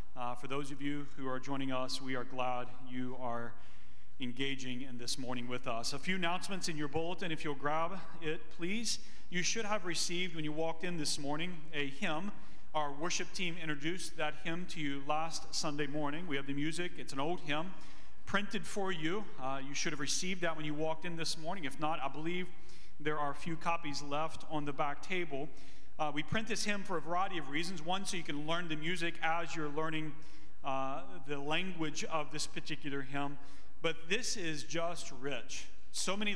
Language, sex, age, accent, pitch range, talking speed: English, male, 40-59, American, 140-175 Hz, 205 wpm